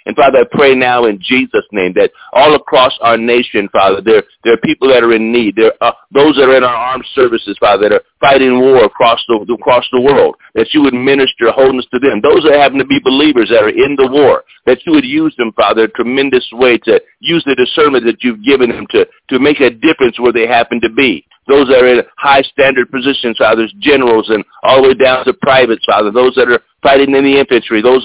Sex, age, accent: male, 50-69, American